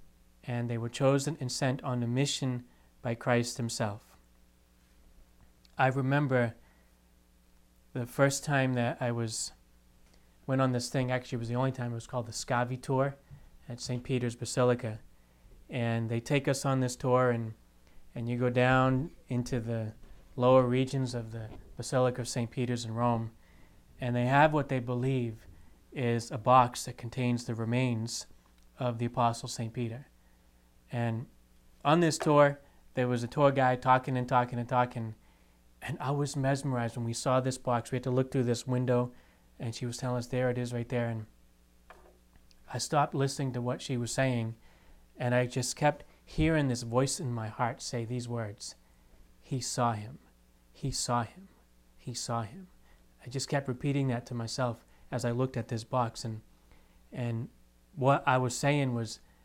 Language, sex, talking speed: English, male, 175 wpm